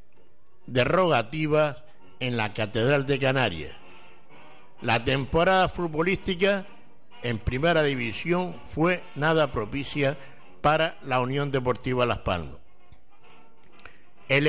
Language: Spanish